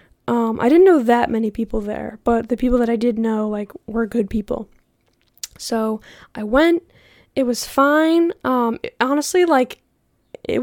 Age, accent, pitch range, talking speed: 10-29, American, 230-270 Hz, 165 wpm